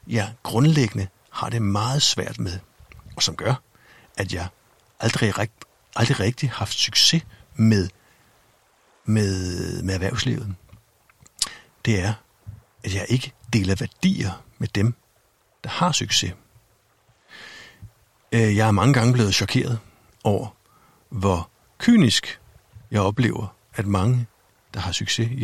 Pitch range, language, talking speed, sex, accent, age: 100-125 Hz, Danish, 120 wpm, male, native, 60-79